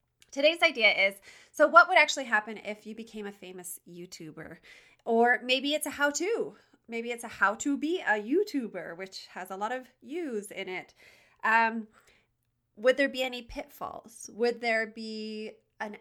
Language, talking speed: English, 165 wpm